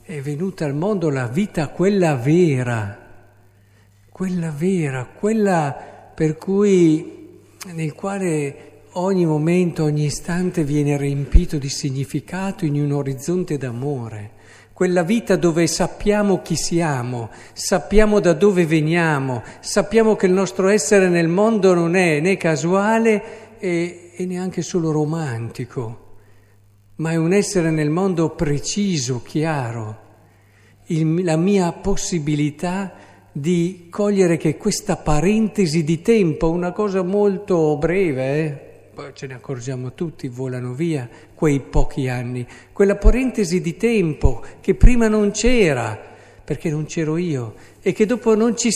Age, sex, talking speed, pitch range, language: 50-69, male, 130 wpm, 140-190 Hz, Italian